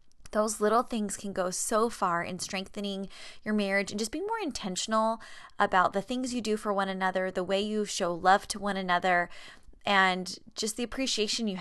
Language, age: English, 20-39